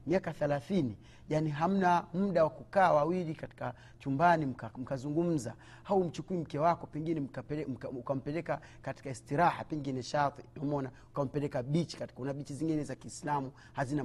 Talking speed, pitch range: 135 wpm, 135-170 Hz